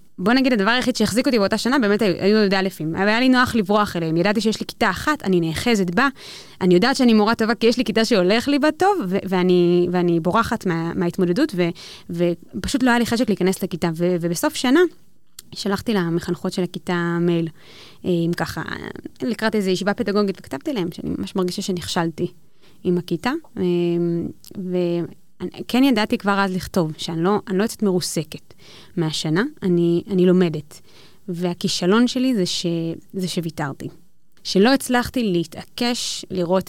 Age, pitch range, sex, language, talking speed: 20-39, 175-225 Hz, female, Hebrew, 165 wpm